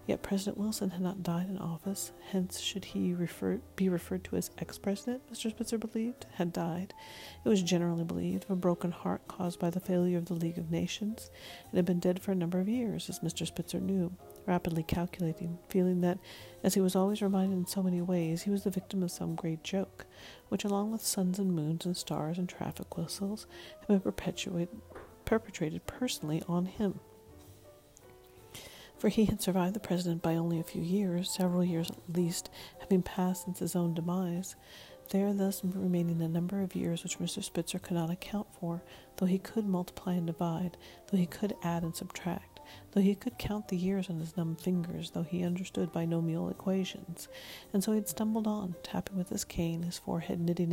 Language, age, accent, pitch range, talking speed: English, 40-59, American, 170-195 Hz, 195 wpm